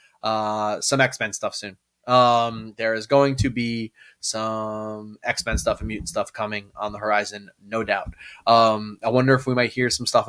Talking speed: 185 wpm